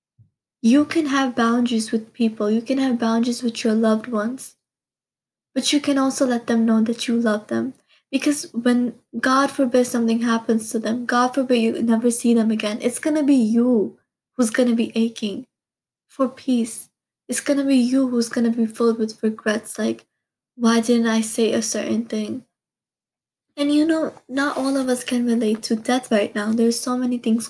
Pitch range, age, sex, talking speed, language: 225-265 Hz, 20-39, female, 195 wpm, English